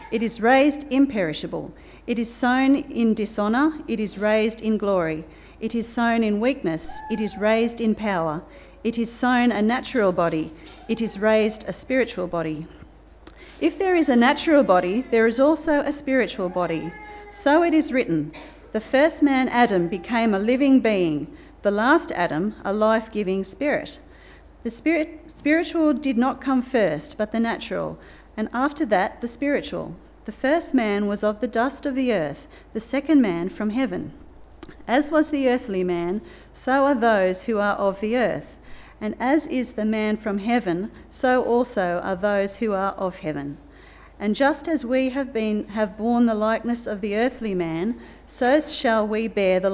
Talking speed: 170 wpm